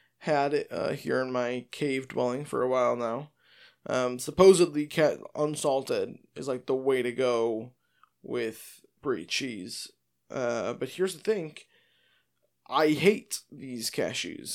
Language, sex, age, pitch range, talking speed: English, male, 20-39, 135-190 Hz, 135 wpm